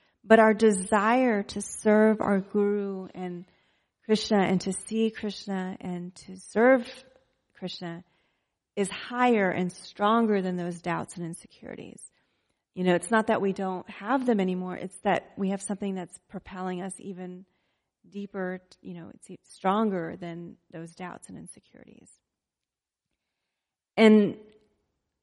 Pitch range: 185-220 Hz